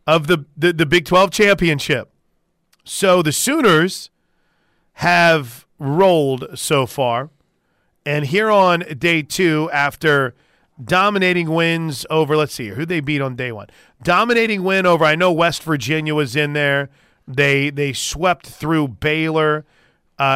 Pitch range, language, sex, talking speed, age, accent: 145-180 Hz, English, male, 140 wpm, 40-59, American